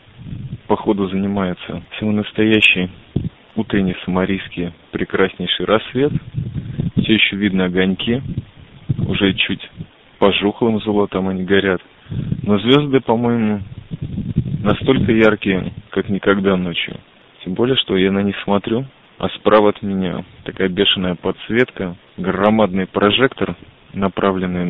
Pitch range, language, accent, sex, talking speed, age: 95-115 Hz, Russian, native, male, 105 wpm, 20-39